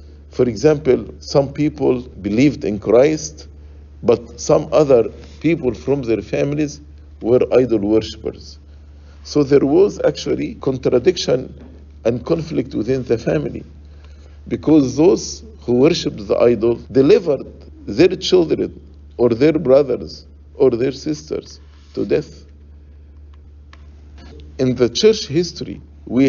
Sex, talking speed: male, 110 wpm